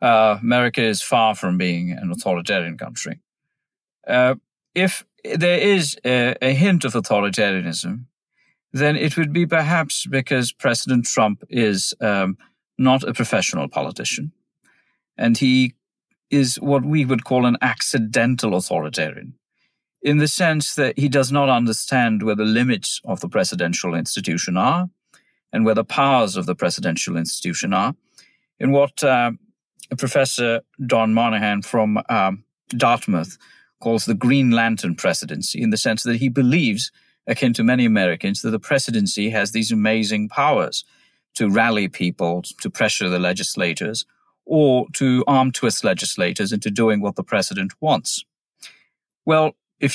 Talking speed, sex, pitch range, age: 140 wpm, male, 110-140 Hz, 50-69